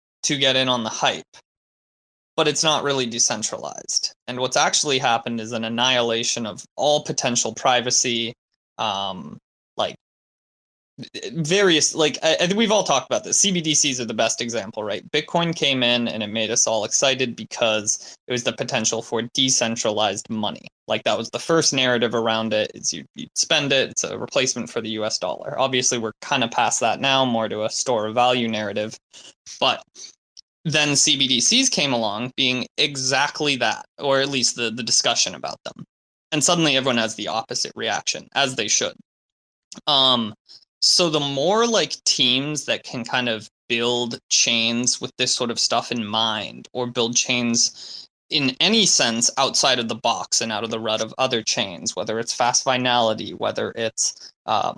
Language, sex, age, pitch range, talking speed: English, male, 20-39, 115-145 Hz, 175 wpm